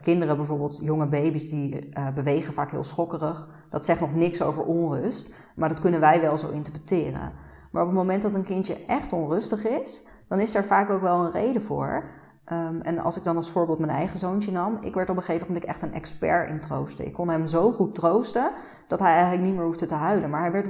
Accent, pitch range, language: Dutch, 155-210 Hz, Dutch